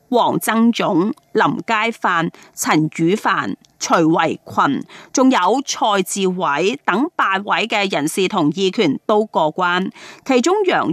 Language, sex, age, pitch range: Chinese, female, 30-49, 190-270 Hz